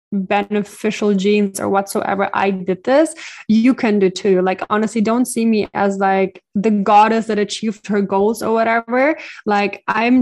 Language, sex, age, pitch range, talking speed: English, female, 20-39, 190-210 Hz, 165 wpm